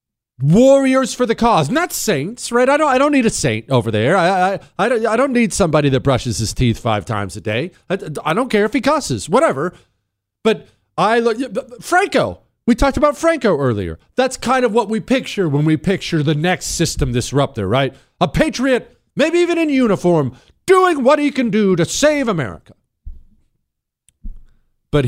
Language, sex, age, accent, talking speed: English, male, 40-59, American, 190 wpm